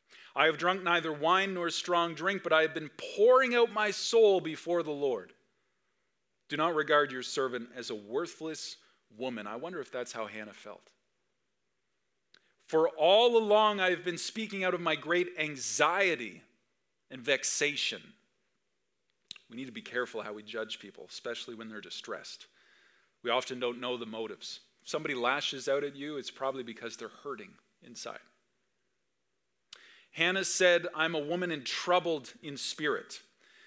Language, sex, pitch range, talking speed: English, male, 130-180 Hz, 160 wpm